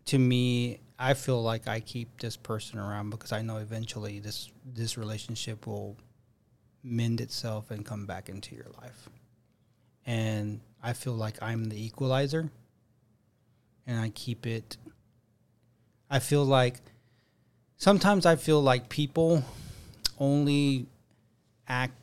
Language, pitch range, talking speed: English, 115-130 Hz, 130 wpm